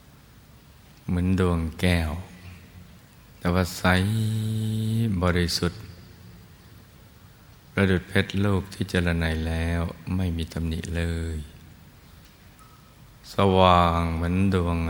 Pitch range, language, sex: 85-95 Hz, Thai, male